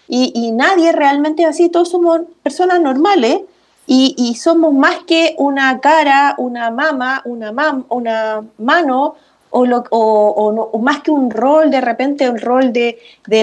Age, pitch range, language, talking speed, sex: 30-49, 235-315 Hz, Spanish, 170 wpm, female